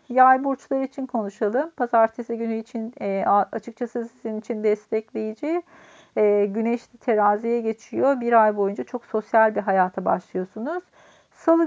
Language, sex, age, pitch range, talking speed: Turkish, female, 40-59, 210-260 Hz, 125 wpm